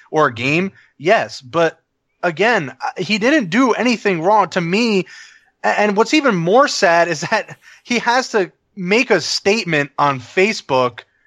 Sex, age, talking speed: male, 20-39, 150 wpm